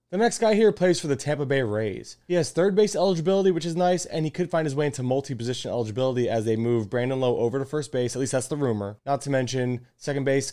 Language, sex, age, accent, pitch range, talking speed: English, male, 20-39, American, 110-135 Hz, 260 wpm